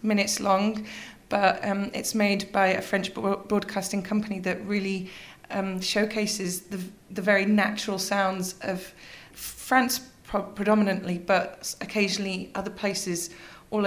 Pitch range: 180-205 Hz